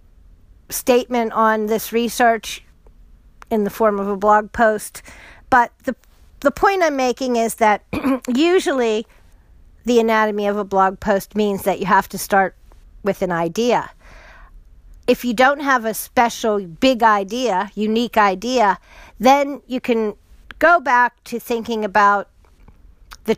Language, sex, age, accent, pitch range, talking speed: English, female, 50-69, American, 195-245 Hz, 140 wpm